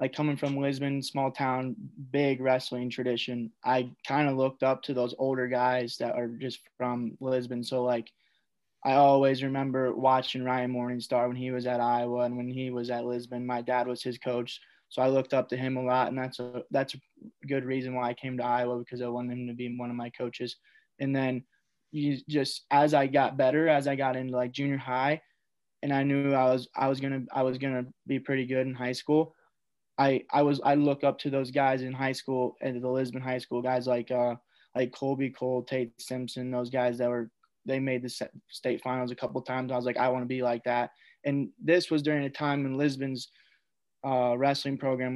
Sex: male